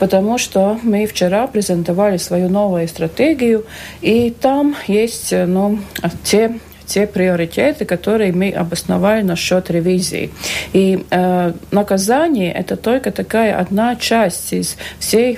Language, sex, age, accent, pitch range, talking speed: Russian, female, 50-69, native, 180-225 Hz, 115 wpm